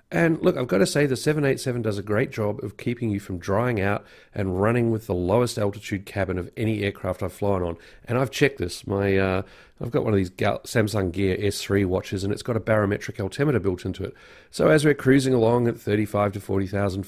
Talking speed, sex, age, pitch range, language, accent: 225 wpm, male, 40-59, 100-125 Hz, English, Australian